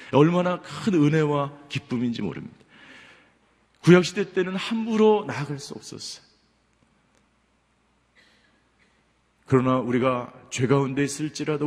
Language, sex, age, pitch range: Korean, male, 40-59, 120-160 Hz